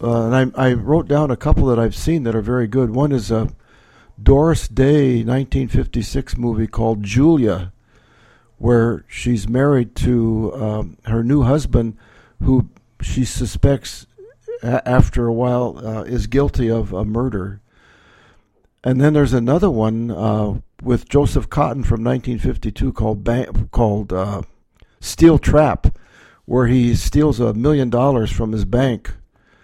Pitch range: 110-130 Hz